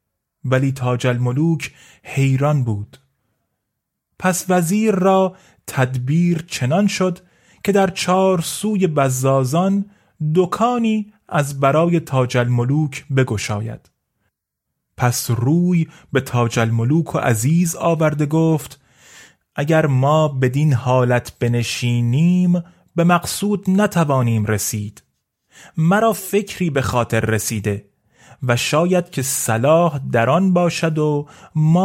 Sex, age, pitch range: male, 30-49, 125-180 Hz